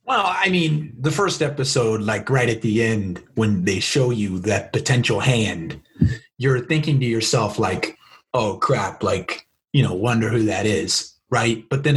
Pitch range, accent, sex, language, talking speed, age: 120-155 Hz, American, male, English, 175 wpm, 30-49